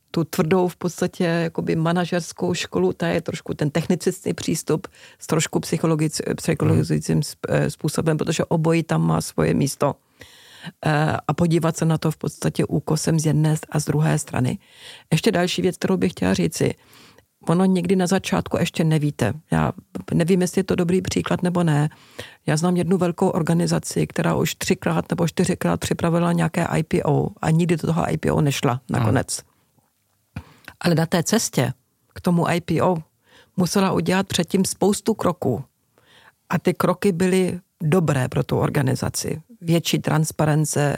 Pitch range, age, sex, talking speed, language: 155-185 Hz, 40-59, female, 150 wpm, Czech